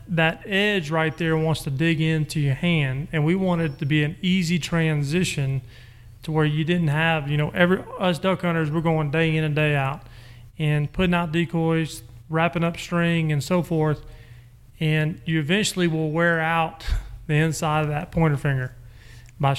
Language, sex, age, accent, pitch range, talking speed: English, male, 30-49, American, 135-165 Hz, 180 wpm